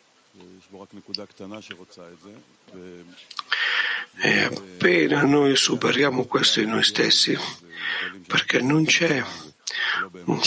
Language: Italian